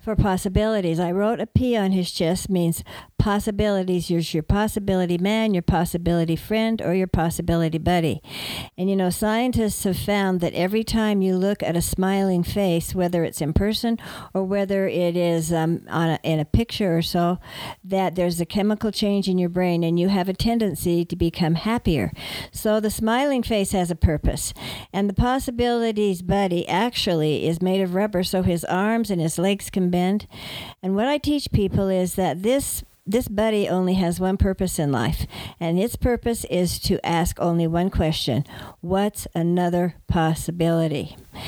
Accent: American